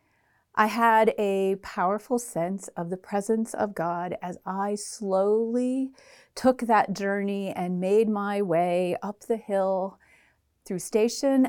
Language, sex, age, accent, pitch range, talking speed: English, female, 40-59, American, 190-235 Hz, 130 wpm